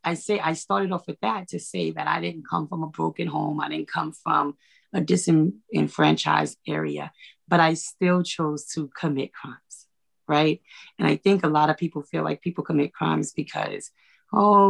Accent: American